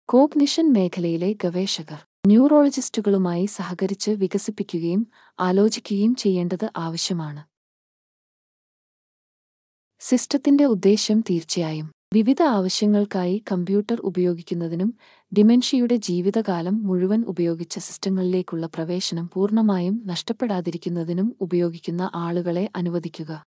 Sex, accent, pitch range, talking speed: female, native, 175-210 Hz, 70 wpm